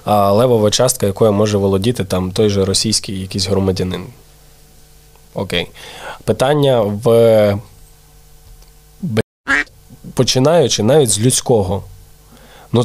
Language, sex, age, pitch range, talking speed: Ukrainian, male, 20-39, 105-125 Hz, 90 wpm